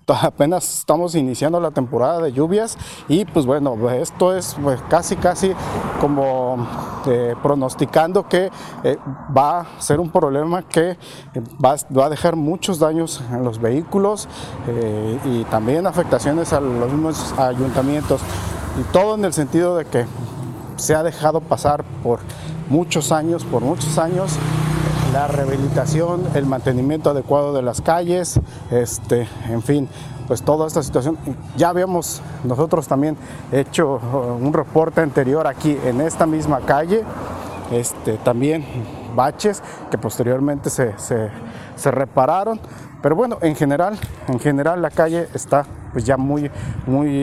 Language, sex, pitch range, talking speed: Spanish, male, 125-160 Hz, 140 wpm